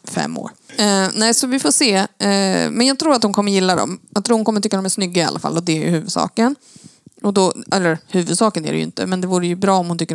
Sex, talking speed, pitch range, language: female, 295 wpm, 190-240 Hz, Swedish